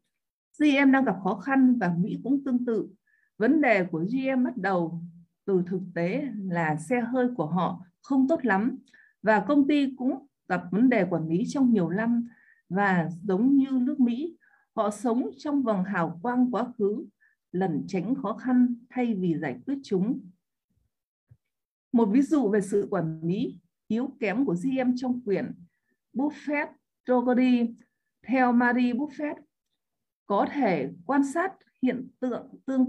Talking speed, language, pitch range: 155 wpm, Vietnamese, 190-265 Hz